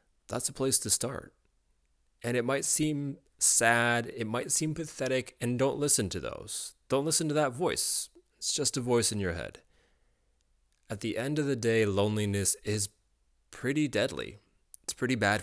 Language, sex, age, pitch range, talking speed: English, male, 20-39, 90-125 Hz, 170 wpm